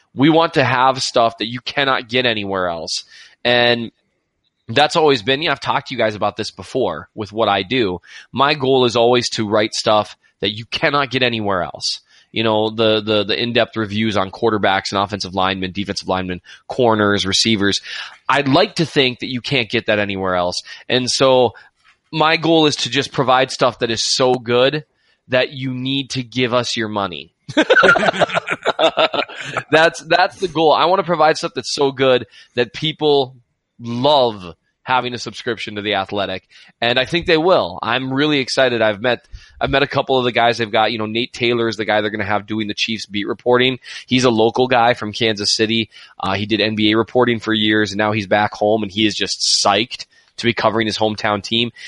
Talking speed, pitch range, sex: 200 wpm, 105-130 Hz, male